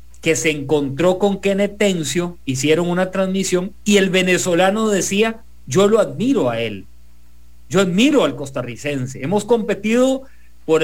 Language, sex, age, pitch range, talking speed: English, male, 40-59, 140-205 Hz, 135 wpm